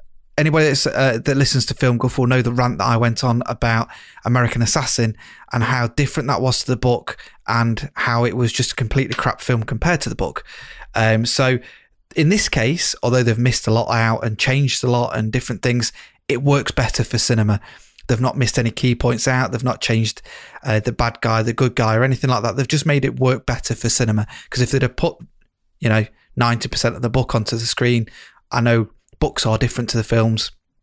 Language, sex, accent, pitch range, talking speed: English, male, British, 115-135 Hz, 220 wpm